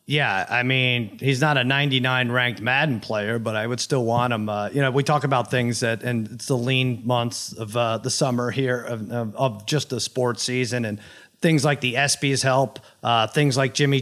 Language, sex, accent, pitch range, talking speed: English, male, American, 125-185 Hz, 210 wpm